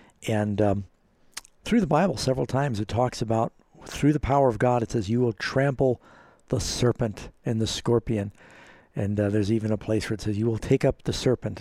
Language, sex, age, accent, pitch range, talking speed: English, male, 60-79, American, 105-130 Hz, 205 wpm